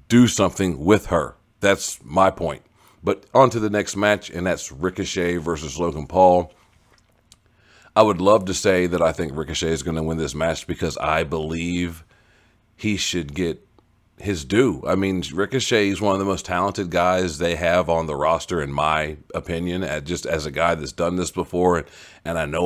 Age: 40-59